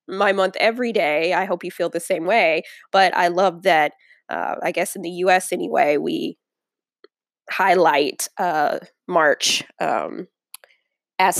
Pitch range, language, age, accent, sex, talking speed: 175-215 Hz, English, 20-39, American, female, 145 wpm